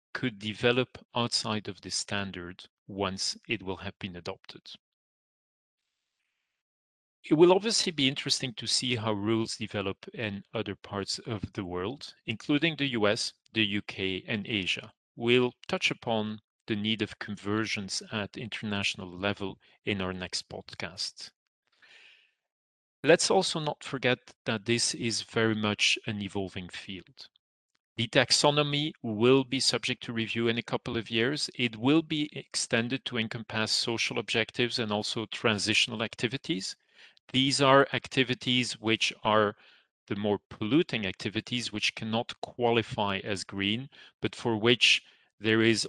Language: English